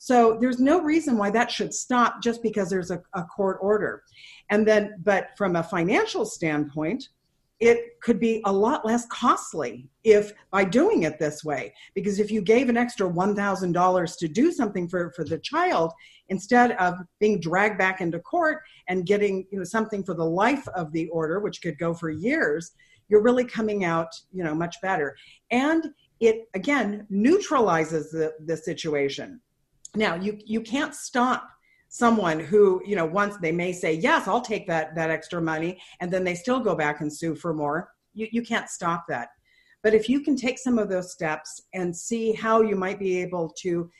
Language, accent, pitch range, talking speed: English, American, 170-235 Hz, 190 wpm